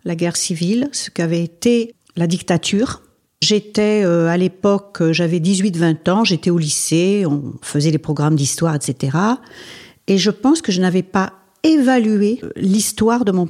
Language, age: French, 50-69